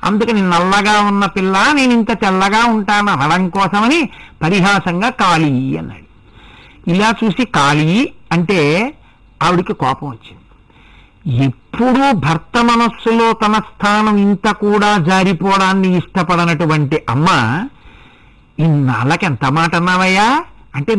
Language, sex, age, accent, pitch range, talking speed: Telugu, male, 60-79, native, 160-230 Hz, 100 wpm